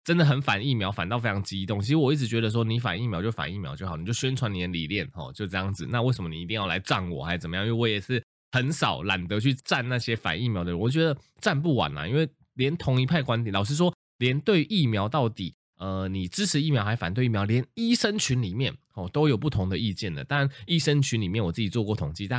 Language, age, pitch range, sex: Chinese, 20-39, 100-140 Hz, male